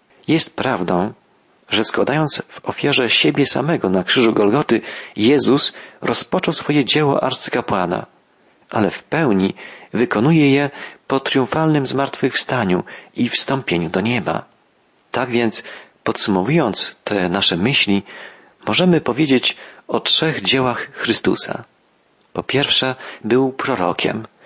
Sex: male